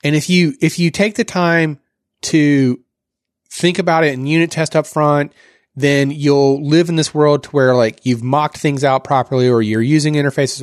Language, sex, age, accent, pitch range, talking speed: English, male, 30-49, American, 140-190 Hz, 200 wpm